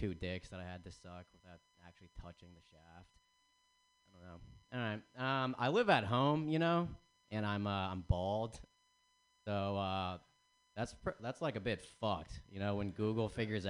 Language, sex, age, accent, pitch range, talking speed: English, male, 30-49, American, 95-155 Hz, 190 wpm